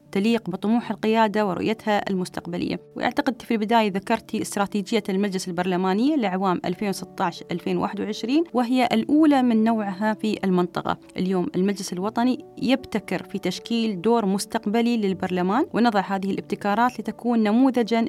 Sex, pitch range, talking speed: female, 190-225 Hz, 115 wpm